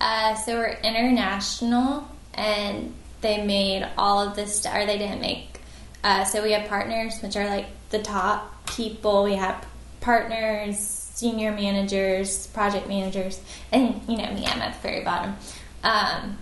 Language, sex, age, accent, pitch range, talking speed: English, female, 10-29, American, 195-230 Hz, 155 wpm